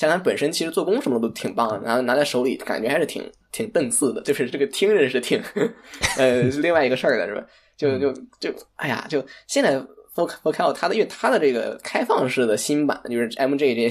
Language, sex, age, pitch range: Chinese, male, 10-29, 120-170 Hz